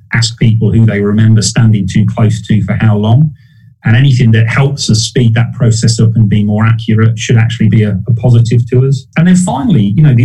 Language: English